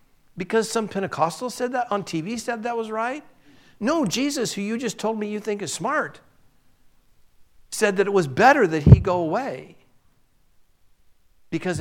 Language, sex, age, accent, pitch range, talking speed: English, male, 60-79, American, 135-200 Hz, 165 wpm